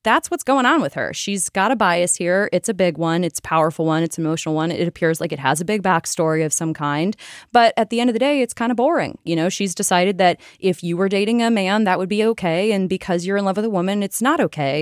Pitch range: 165-220 Hz